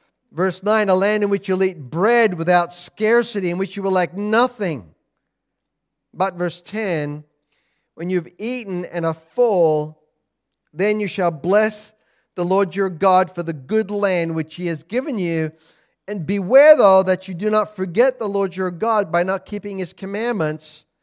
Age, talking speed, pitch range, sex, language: 40-59, 170 wpm, 165-215 Hz, male, English